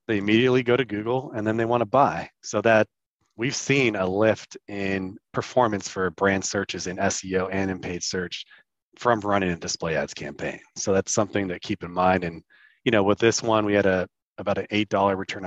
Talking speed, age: 205 wpm, 30-49